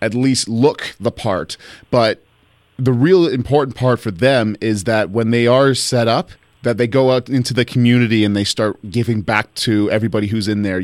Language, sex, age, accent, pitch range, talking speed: English, male, 30-49, American, 105-130 Hz, 200 wpm